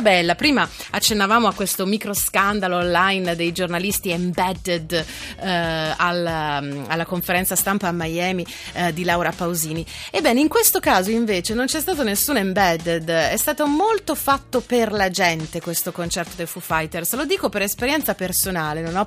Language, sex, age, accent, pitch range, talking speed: Italian, female, 30-49, native, 165-225 Hz, 160 wpm